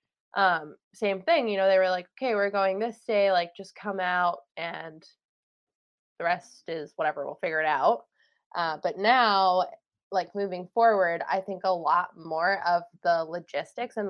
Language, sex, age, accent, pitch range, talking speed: English, female, 20-39, American, 175-220 Hz, 175 wpm